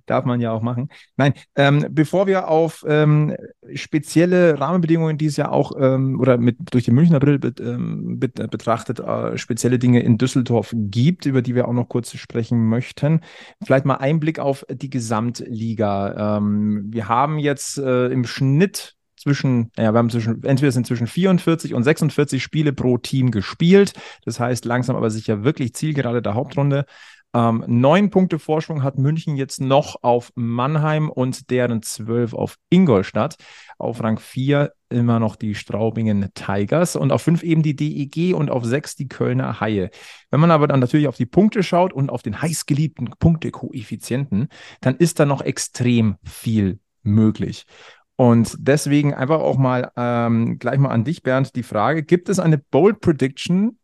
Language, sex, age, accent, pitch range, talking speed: German, male, 30-49, German, 120-155 Hz, 170 wpm